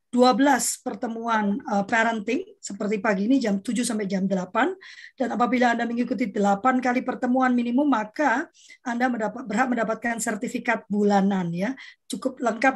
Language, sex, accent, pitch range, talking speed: Indonesian, female, native, 215-265 Hz, 135 wpm